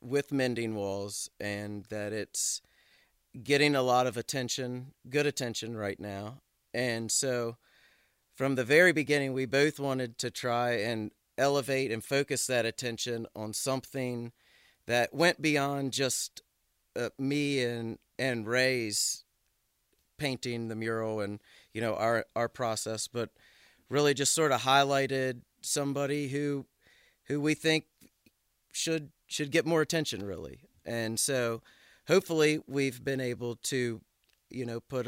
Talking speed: 135 wpm